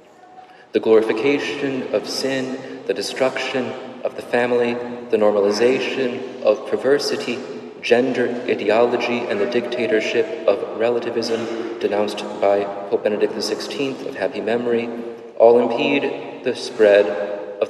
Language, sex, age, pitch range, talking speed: English, male, 30-49, 110-135 Hz, 110 wpm